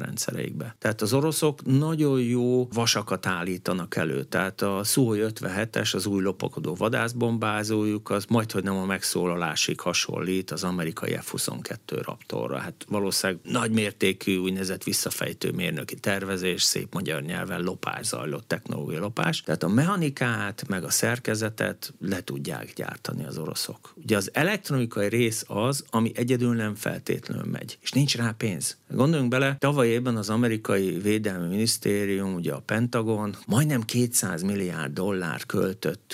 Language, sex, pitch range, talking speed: Hungarian, male, 100-125 Hz, 135 wpm